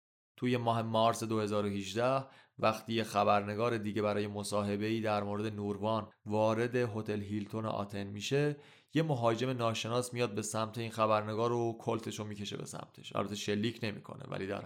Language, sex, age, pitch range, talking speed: Persian, male, 30-49, 105-130 Hz, 150 wpm